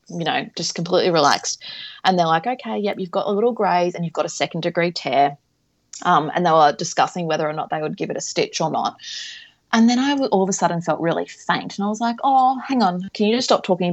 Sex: female